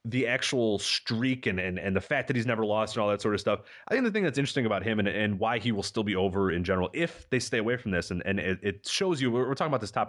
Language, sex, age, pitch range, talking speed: English, male, 30-49, 105-145 Hz, 315 wpm